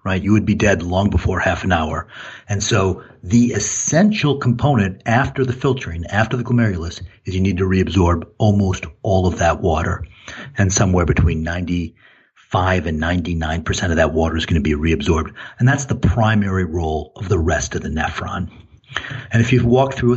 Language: English